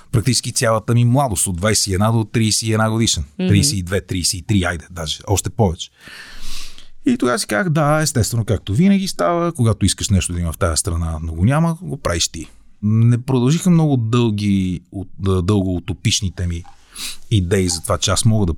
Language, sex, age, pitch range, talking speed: Bulgarian, male, 30-49, 90-115 Hz, 170 wpm